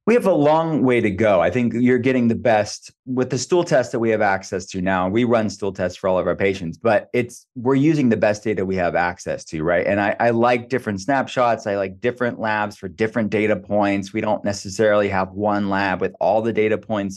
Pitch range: 100-120 Hz